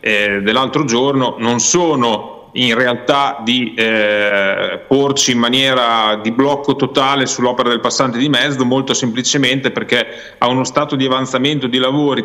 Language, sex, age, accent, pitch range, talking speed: Italian, male, 30-49, native, 125-145 Hz, 140 wpm